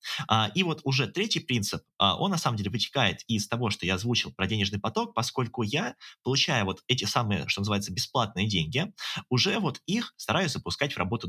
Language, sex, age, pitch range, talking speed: Russian, male, 20-39, 100-140 Hz, 185 wpm